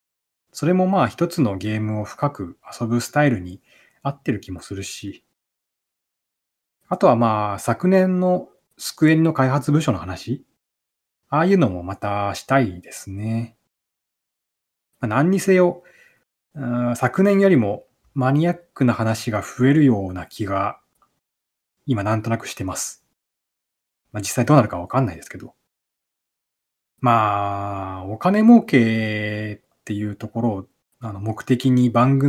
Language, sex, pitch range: Japanese, male, 100-145 Hz